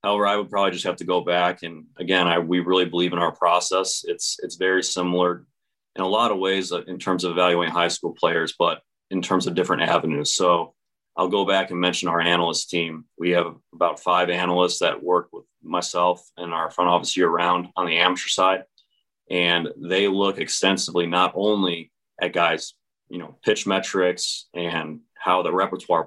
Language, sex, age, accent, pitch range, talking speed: English, male, 30-49, American, 85-95 Hz, 190 wpm